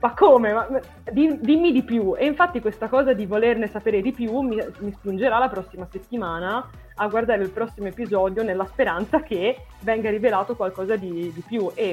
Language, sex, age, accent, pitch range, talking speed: Italian, female, 20-39, native, 175-225 Hz, 180 wpm